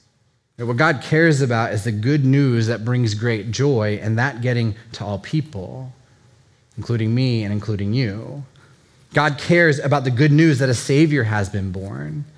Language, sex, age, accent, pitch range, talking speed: English, male, 30-49, American, 120-155 Hz, 170 wpm